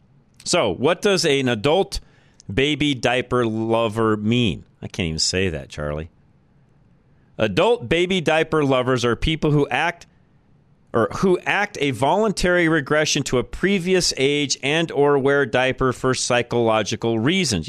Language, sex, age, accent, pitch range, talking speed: English, male, 40-59, American, 100-140 Hz, 135 wpm